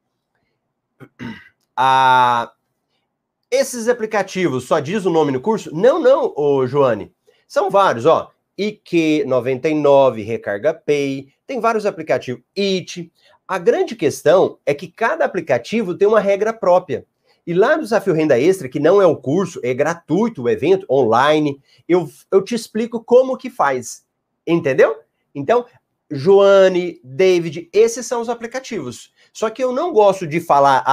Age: 30-49